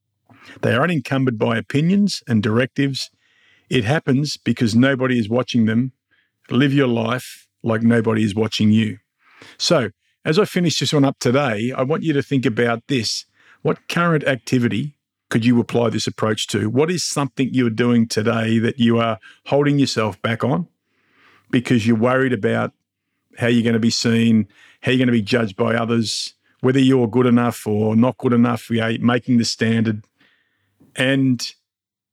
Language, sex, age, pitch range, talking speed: English, male, 50-69, 115-130 Hz, 165 wpm